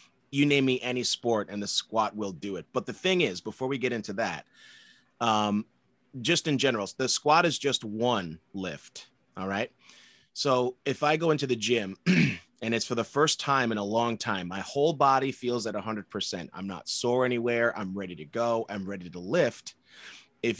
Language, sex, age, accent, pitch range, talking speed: English, male, 30-49, American, 95-125 Hz, 205 wpm